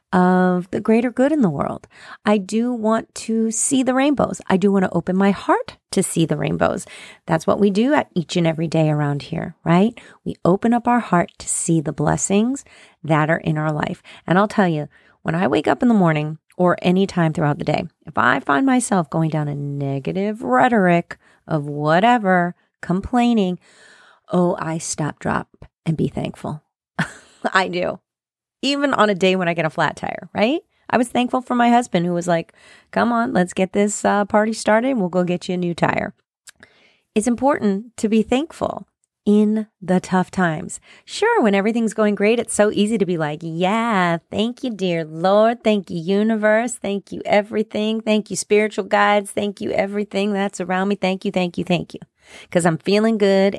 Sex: female